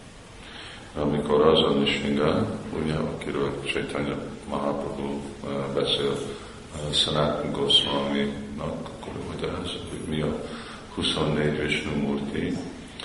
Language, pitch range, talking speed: Hungarian, 70-75 Hz, 85 wpm